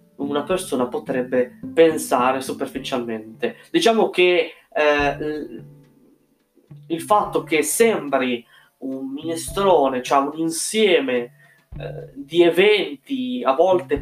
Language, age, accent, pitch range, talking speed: Italian, 20-39, native, 135-175 Hz, 95 wpm